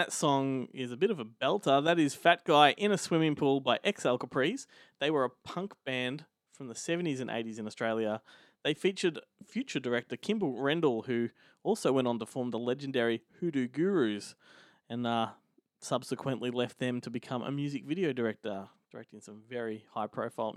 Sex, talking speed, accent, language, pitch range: male, 180 wpm, Australian, English, 130-170 Hz